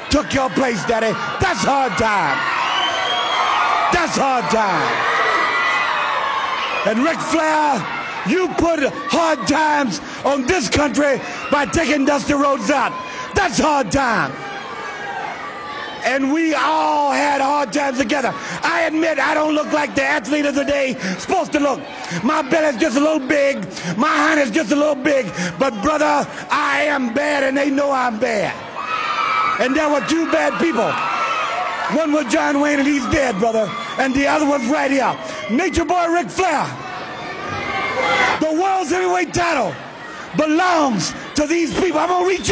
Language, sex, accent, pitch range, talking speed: English, male, American, 275-330 Hz, 150 wpm